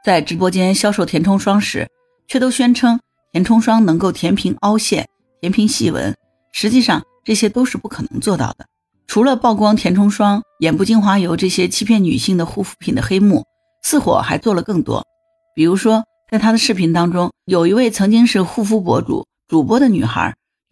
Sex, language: female, Chinese